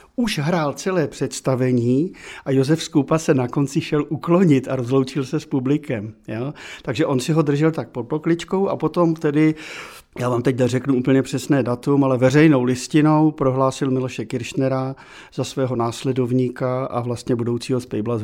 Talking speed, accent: 165 wpm, native